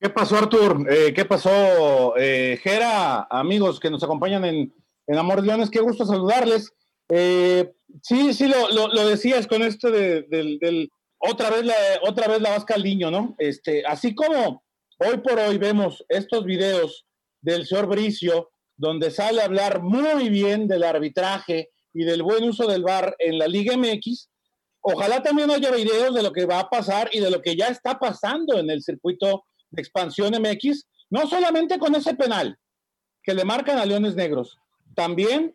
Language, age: Spanish, 40-59